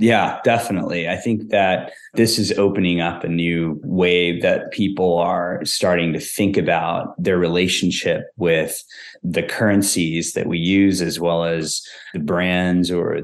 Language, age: English, 20-39